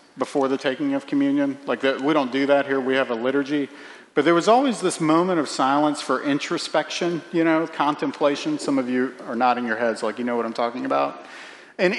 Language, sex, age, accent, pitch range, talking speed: English, male, 40-59, American, 150-205 Hz, 215 wpm